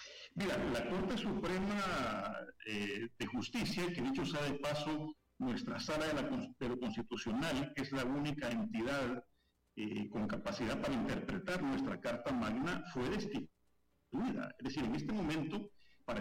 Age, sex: 50-69, male